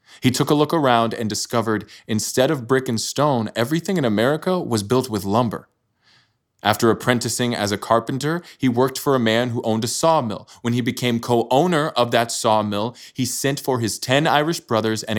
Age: 20-39